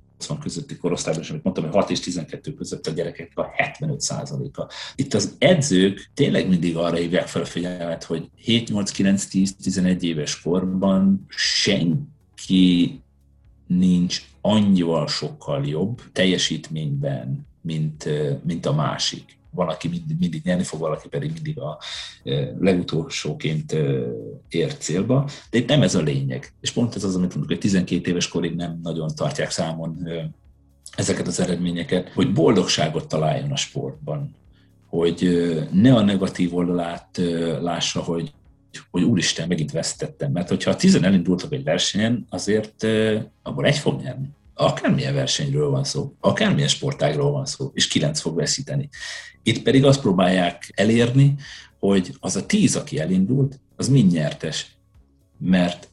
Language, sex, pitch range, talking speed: Hungarian, male, 85-135 Hz, 140 wpm